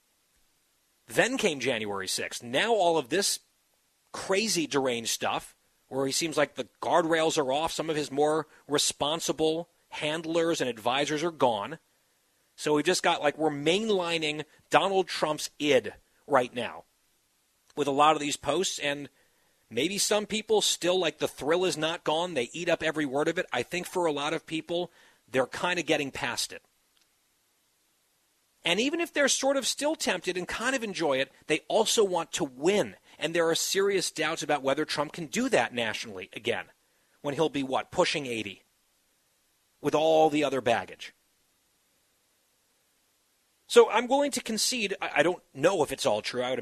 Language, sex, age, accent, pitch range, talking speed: English, male, 40-59, American, 145-185 Hz, 175 wpm